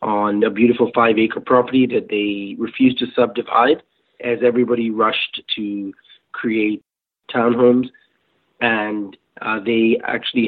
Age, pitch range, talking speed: 30-49, 105-120 Hz, 115 wpm